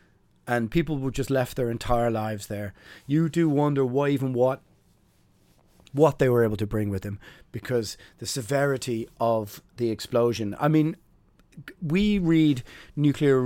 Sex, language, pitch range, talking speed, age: male, English, 110-140 Hz, 150 wpm, 30-49